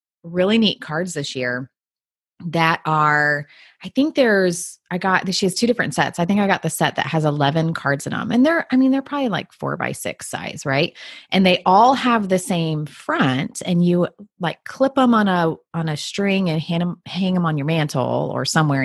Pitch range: 155-190 Hz